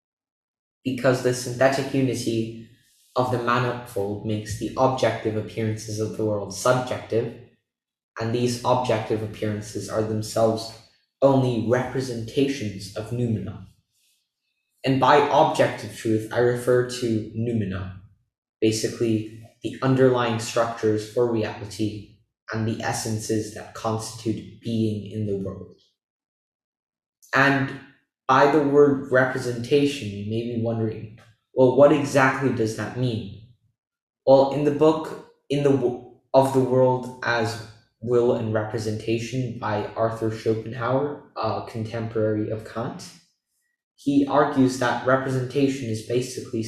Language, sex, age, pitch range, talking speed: English, male, 20-39, 110-125 Hz, 115 wpm